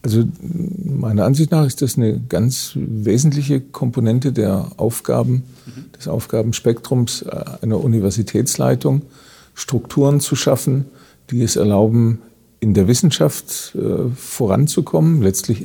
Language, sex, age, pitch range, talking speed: German, male, 50-69, 105-125 Hz, 105 wpm